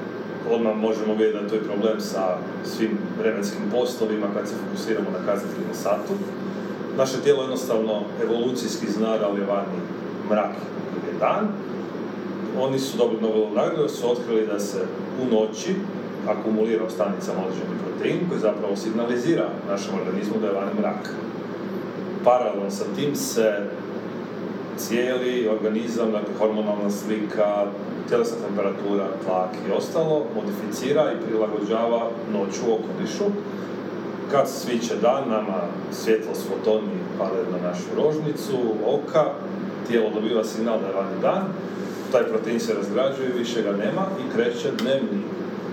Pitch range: 105-135 Hz